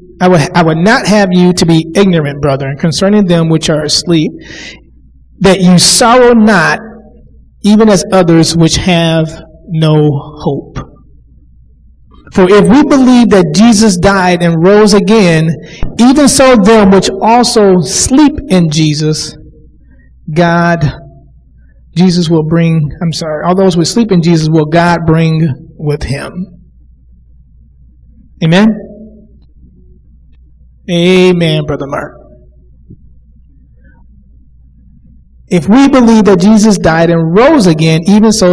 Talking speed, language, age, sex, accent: 120 wpm, English, 30-49, male, American